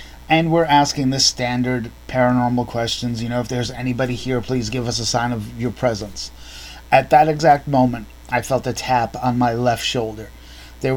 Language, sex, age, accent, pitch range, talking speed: English, male, 30-49, American, 110-130 Hz, 185 wpm